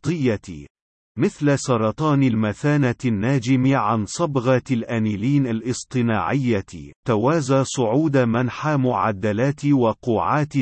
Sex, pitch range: male, 110-140 Hz